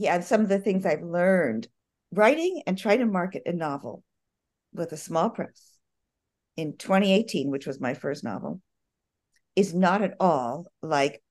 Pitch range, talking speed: 165-210 Hz, 160 wpm